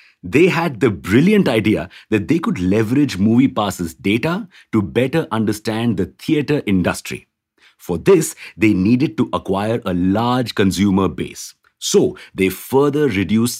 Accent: Indian